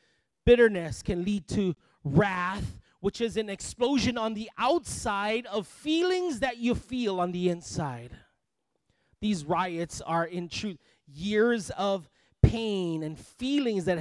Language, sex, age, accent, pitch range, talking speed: English, male, 30-49, American, 190-250 Hz, 135 wpm